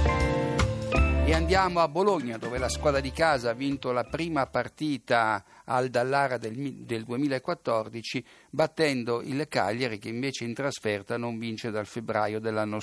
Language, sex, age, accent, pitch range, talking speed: Italian, male, 50-69, native, 115-145 Hz, 140 wpm